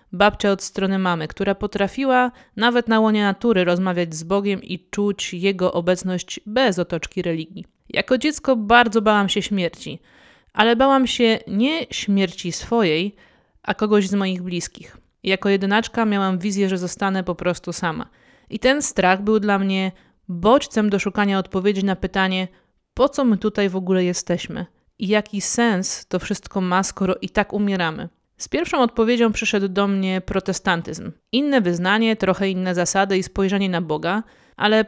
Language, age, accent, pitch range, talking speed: Polish, 20-39, native, 185-215 Hz, 160 wpm